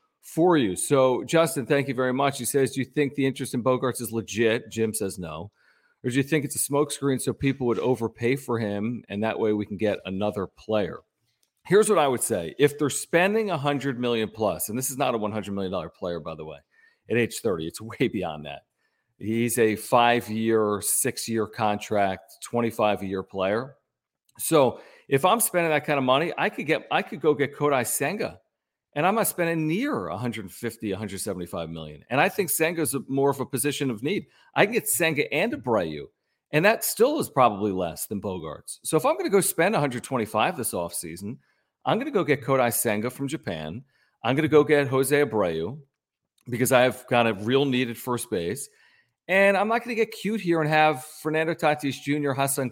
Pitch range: 110-145 Hz